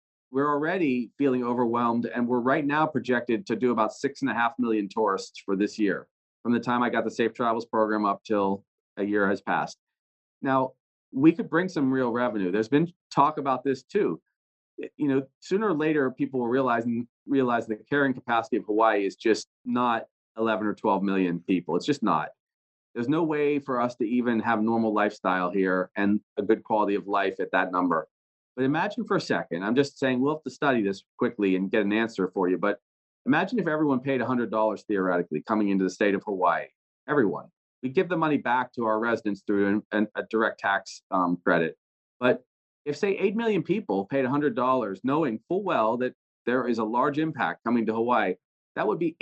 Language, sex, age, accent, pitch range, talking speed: English, male, 40-59, American, 105-140 Hz, 205 wpm